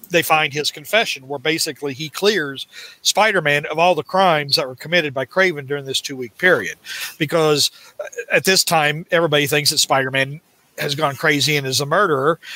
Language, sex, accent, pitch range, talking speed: English, male, American, 145-175 Hz, 180 wpm